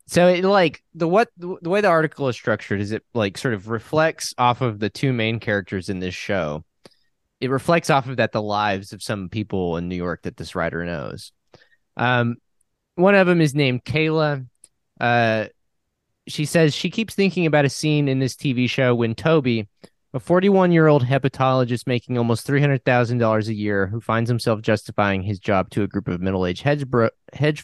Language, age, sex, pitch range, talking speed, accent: English, 20-39, male, 110-155 Hz, 190 wpm, American